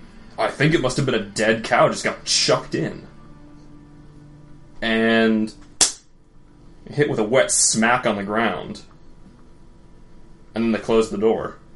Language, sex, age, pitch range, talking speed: English, male, 20-39, 105-135 Hz, 145 wpm